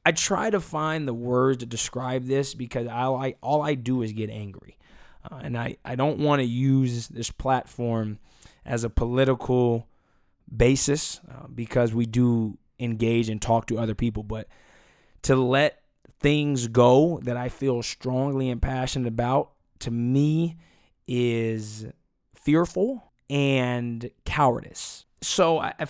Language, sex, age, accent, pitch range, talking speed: English, male, 20-39, American, 115-135 Hz, 140 wpm